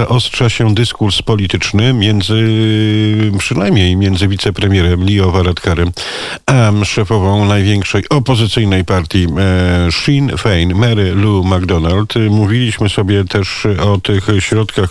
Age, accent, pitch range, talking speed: 50-69, native, 95-115 Hz, 105 wpm